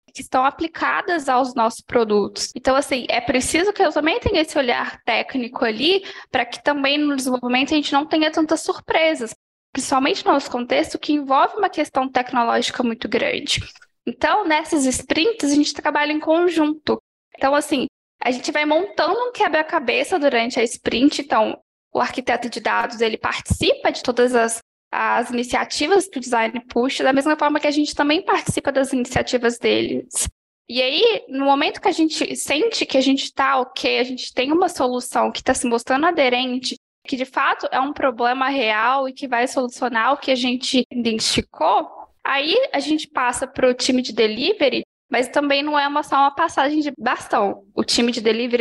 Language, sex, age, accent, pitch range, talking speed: Portuguese, female, 10-29, Brazilian, 250-305 Hz, 180 wpm